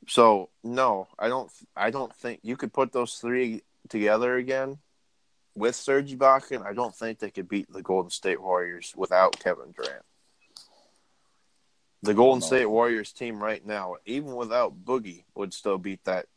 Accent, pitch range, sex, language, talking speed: American, 100-120 Hz, male, English, 160 wpm